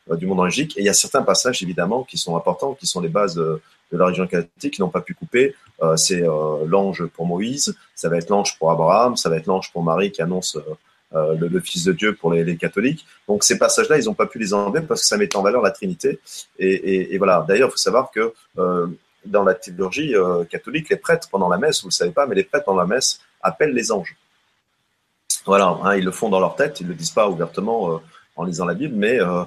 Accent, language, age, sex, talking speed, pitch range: French, French, 30-49, male, 265 wpm, 85-145 Hz